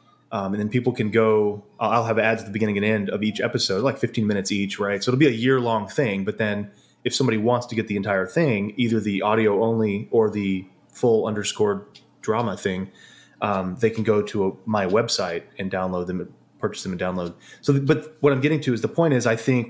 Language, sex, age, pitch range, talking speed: English, male, 30-49, 100-120 Hz, 230 wpm